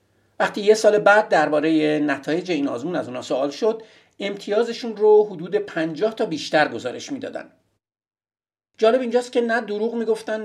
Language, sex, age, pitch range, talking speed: Persian, male, 50-69, 155-240 Hz, 150 wpm